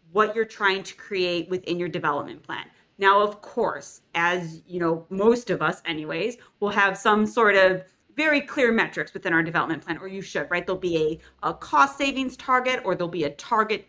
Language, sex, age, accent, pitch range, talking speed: English, female, 30-49, American, 175-225 Hz, 205 wpm